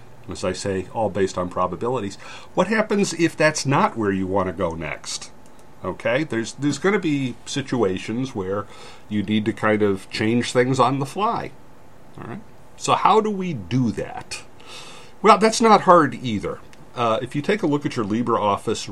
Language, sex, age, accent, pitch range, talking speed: English, male, 50-69, American, 95-125 Hz, 185 wpm